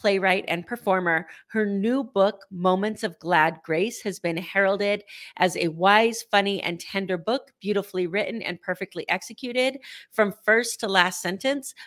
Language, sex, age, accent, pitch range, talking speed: English, female, 30-49, American, 175-210 Hz, 150 wpm